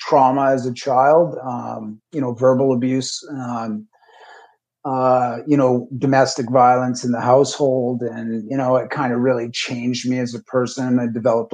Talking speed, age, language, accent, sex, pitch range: 165 wpm, 40-59, English, American, male, 120-135 Hz